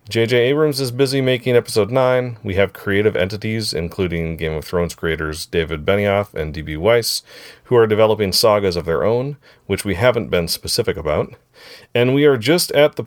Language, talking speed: English, 185 wpm